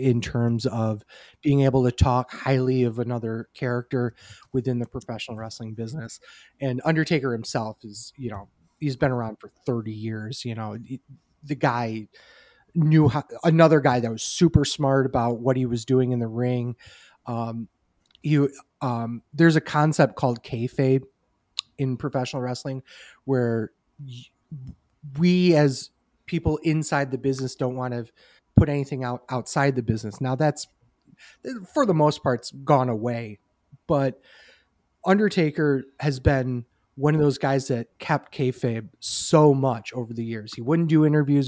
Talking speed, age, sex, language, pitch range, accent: 150 wpm, 30-49, male, English, 120-145 Hz, American